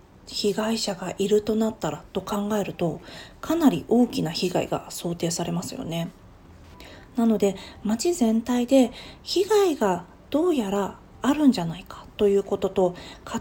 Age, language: 40-59, Japanese